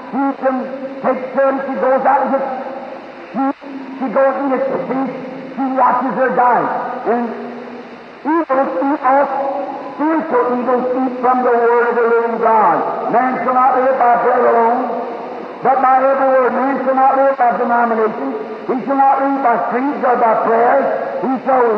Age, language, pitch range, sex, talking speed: 50-69, English, 245-285 Hz, male, 170 wpm